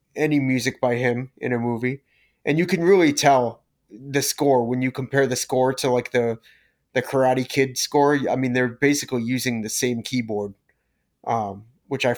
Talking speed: 180 wpm